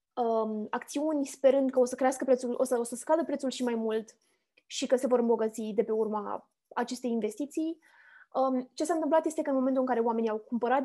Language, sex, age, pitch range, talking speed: Romanian, female, 20-39, 235-275 Hz, 210 wpm